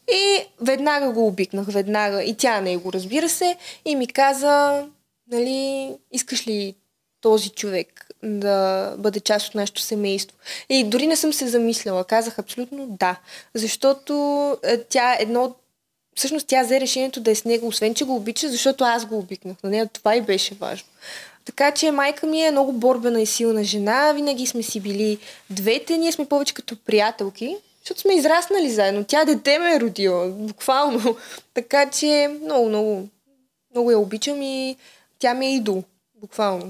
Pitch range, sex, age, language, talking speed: 215-275 Hz, female, 20-39, Bulgarian, 165 wpm